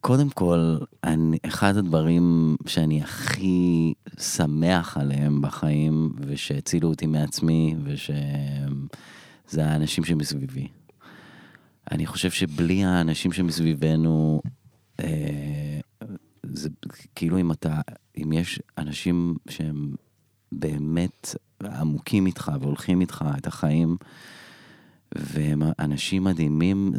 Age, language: 30-49, Hebrew